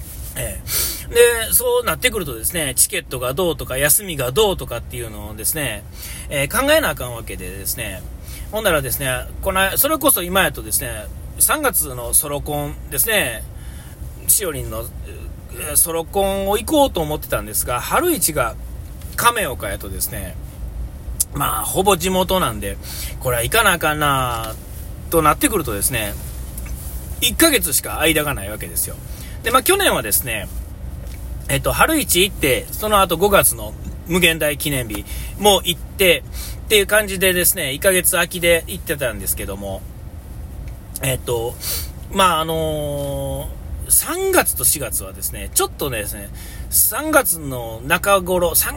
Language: Japanese